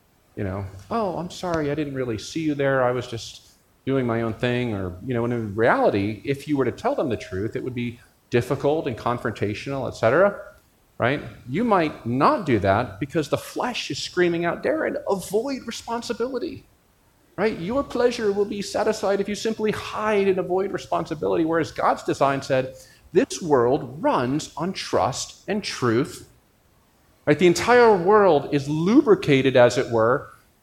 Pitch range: 125-185 Hz